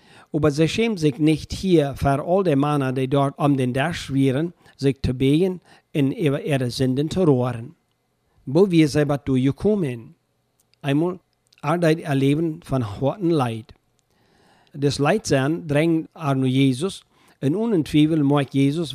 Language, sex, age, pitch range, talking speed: German, male, 60-79, 135-160 Hz, 140 wpm